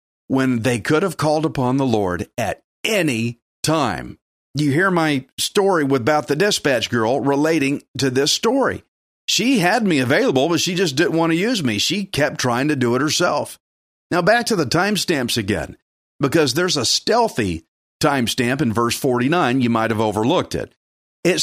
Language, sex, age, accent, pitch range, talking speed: English, male, 50-69, American, 130-195 Hz, 175 wpm